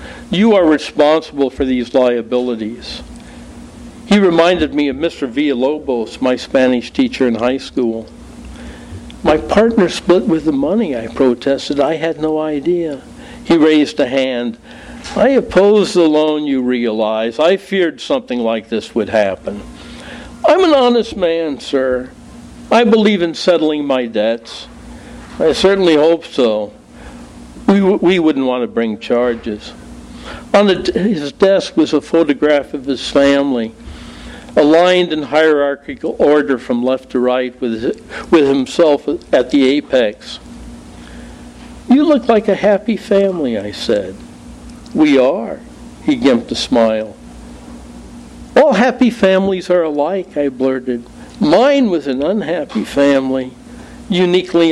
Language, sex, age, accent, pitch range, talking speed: English, male, 60-79, American, 115-175 Hz, 130 wpm